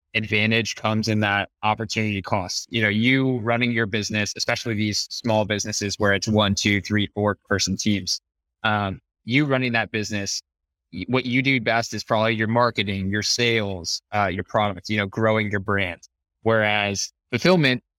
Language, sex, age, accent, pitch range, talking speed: English, male, 20-39, American, 100-115 Hz, 165 wpm